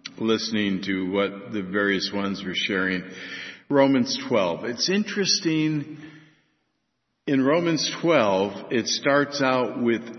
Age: 60-79